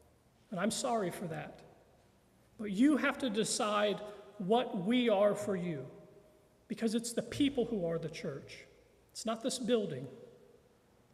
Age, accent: 40-59, American